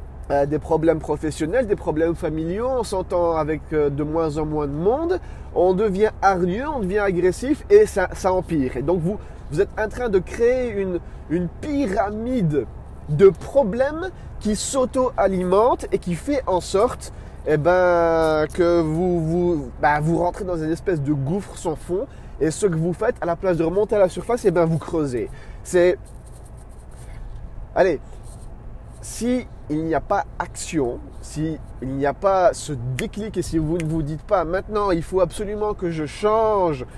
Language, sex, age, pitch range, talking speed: French, male, 20-39, 160-205 Hz, 175 wpm